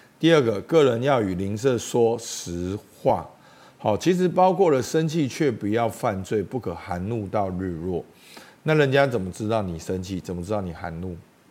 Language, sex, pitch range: Chinese, male, 95-155 Hz